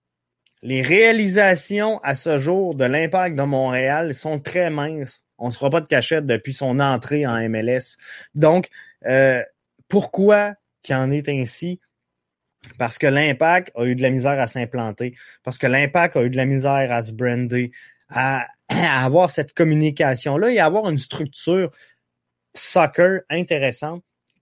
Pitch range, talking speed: 125-170 Hz, 155 wpm